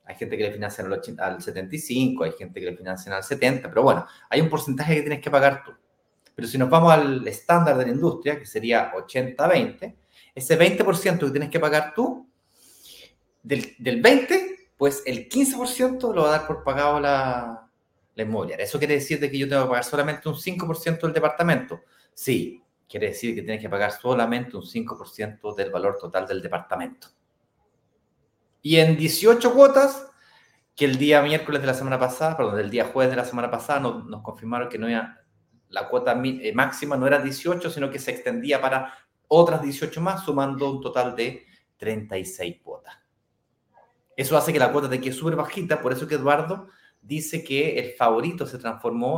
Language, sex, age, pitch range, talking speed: Spanish, male, 30-49, 125-165 Hz, 190 wpm